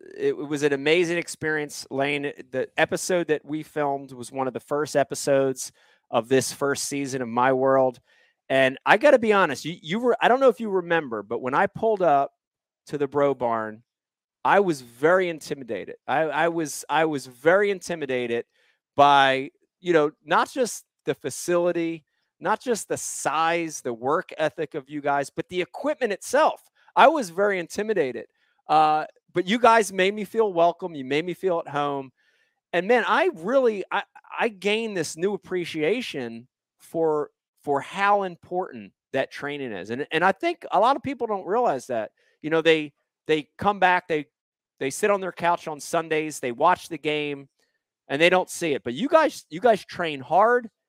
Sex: male